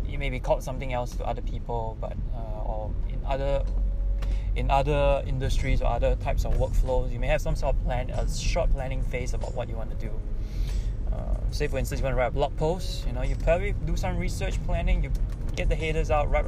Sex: male